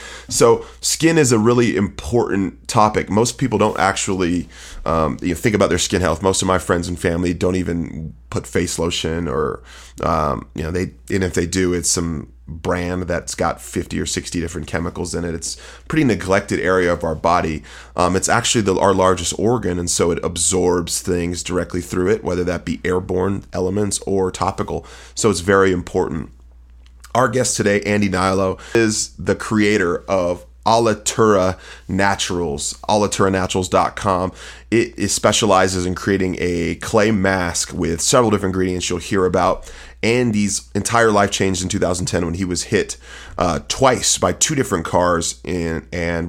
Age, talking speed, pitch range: 30-49, 165 wpm, 85-100 Hz